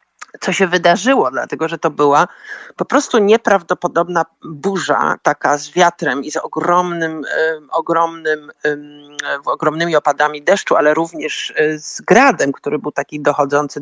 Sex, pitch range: male, 145-185 Hz